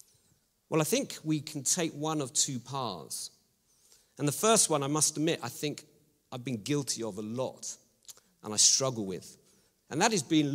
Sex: male